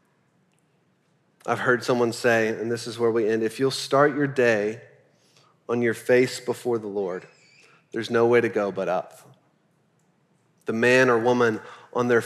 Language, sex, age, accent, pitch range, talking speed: English, male, 30-49, American, 115-145 Hz, 165 wpm